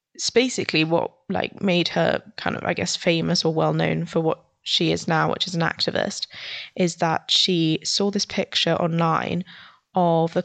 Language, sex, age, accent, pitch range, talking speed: English, female, 10-29, British, 165-195 Hz, 185 wpm